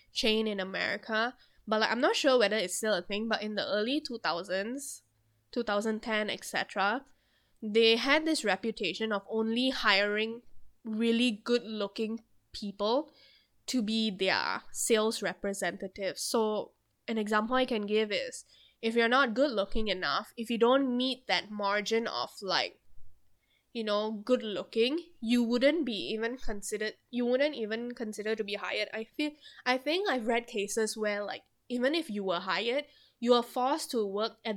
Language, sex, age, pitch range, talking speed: English, female, 10-29, 210-245 Hz, 160 wpm